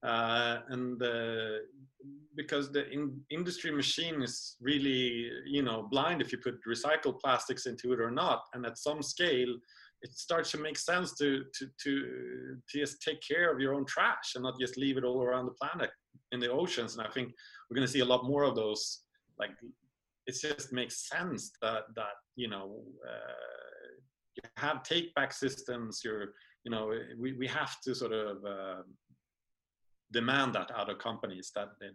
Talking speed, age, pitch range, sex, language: 185 wpm, 30-49, 105-135 Hz, male, English